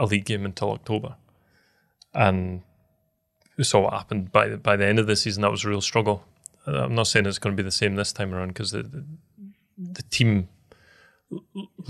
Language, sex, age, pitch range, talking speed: English, male, 30-49, 100-120 Hz, 200 wpm